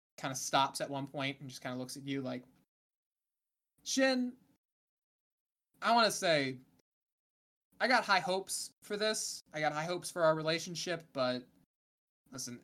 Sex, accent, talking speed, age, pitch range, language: male, American, 160 wpm, 20-39, 130-175 Hz, English